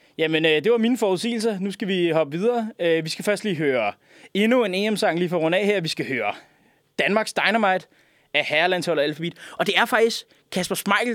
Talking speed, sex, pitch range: 215 wpm, male, 155-210 Hz